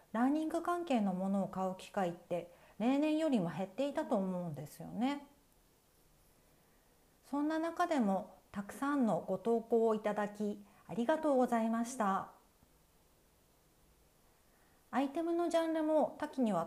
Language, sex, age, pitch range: Japanese, female, 40-59, 195-270 Hz